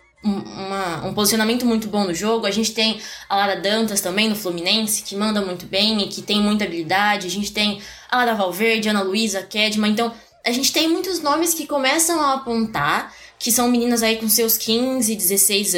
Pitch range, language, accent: 210-265 Hz, Portuguese, Brazilian